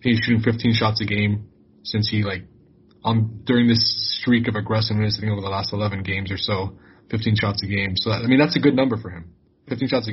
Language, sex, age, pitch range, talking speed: English, male, 20-39, 105-120 Hz, 245 wpm